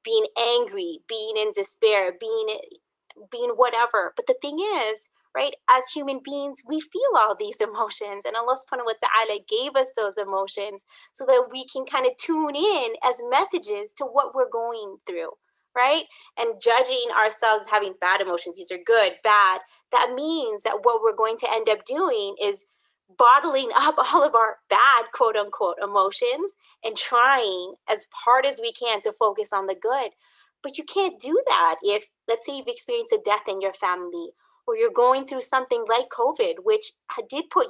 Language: English